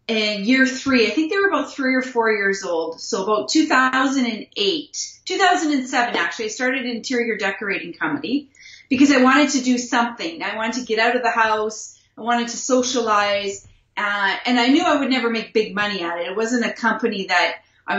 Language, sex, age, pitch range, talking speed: English, female, 30-49, 205-255 Hz, 200 wpm